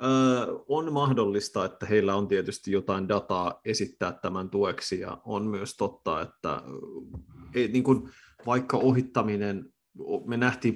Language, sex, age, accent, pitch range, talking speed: Finnish, male, 30-49, native, 95-110 Hz, 110 wpm